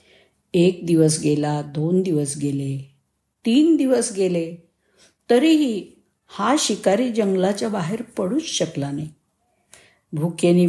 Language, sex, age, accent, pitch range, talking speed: Marathi, female, 50-69, native, 160-225 Hz, 100 wpm